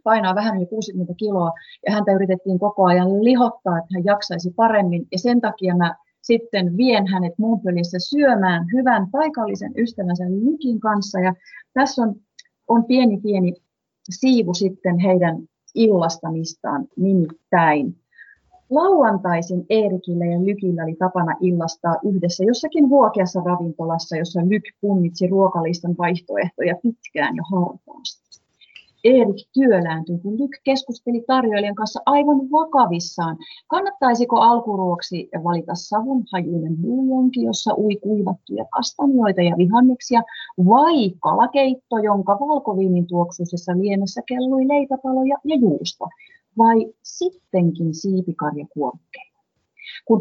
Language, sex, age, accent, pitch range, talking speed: Finnish, female, 30-49, native, 180-235 Hz, 110 wpm